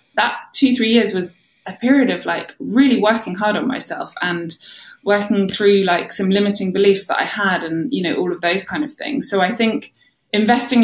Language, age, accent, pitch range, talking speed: English, 20-39, British, 170-220 Hz, 205 wpm